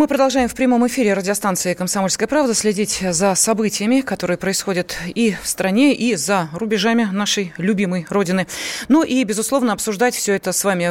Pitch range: 175-230 Hz